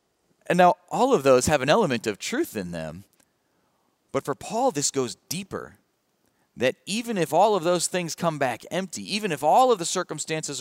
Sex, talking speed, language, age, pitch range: male, 190 wpm, English, 30-49, 100-155 Hz